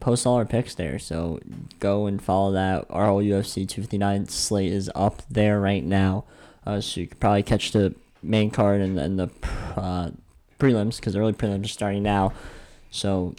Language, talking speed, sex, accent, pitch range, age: English, 190 wpm, male, American, 100-140 Hz, 10-29